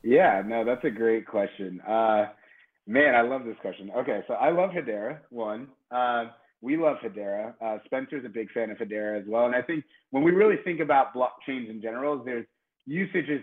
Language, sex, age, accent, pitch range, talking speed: English, male, 30-49, American, 110-135 Hz, 195 wpm